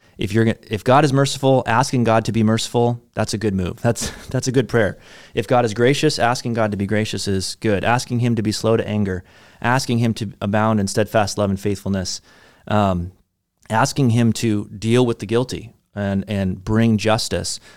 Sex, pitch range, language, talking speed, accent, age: male, 100-120 Hz, English, 200 wpm, American, 30-49